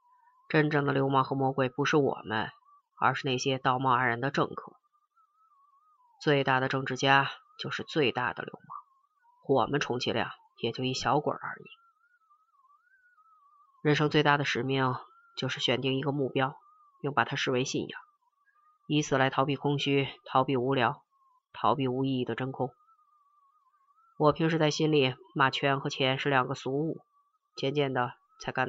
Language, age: Chinese, 20-39